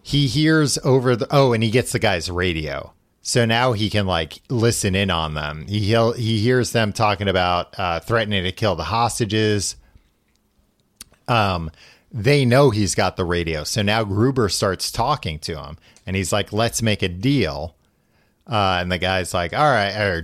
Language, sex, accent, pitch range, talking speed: English, male, American, 95-120 Hz, 185 wpm